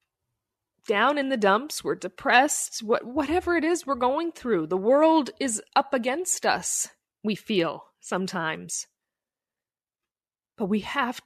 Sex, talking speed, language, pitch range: female, 135 wpm, English, 175-275 Hz